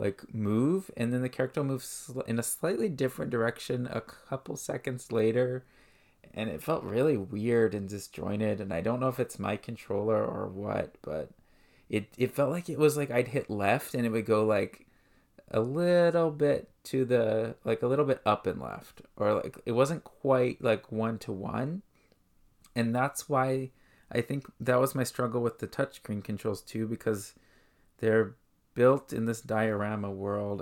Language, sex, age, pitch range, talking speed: English, male, 20-39, 105-130 Hz, 180 wpm